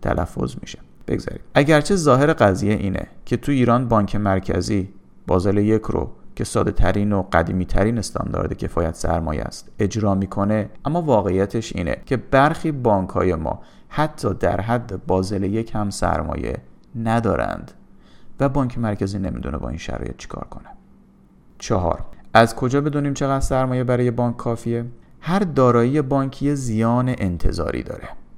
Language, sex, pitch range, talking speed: Persian, male, 95-130 Hz, 140 wpm